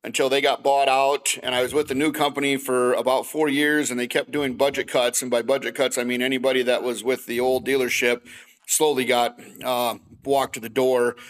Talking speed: 225 wpm